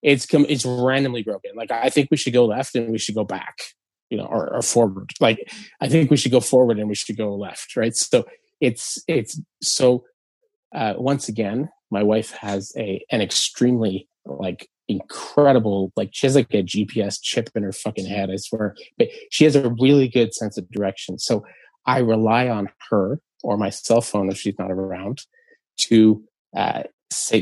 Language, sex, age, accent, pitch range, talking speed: English, male, 20-39, American, 110-145 Hz, 195 wpm